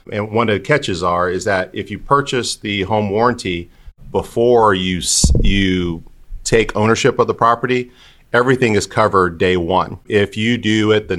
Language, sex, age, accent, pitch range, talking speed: English, male, 40-59, American, 95-110 Hz, 170 wpm